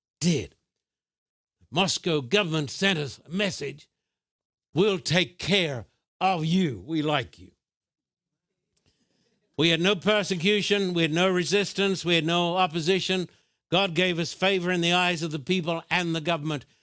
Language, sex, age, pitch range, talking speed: English, male, 60-79, 150-180 Hz, 145 wpm